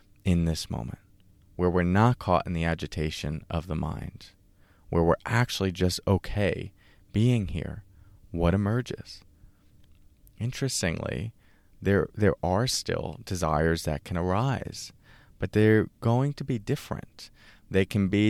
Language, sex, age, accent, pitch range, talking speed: English, male, 30-49, American, 85-105 Hz, 130 wpm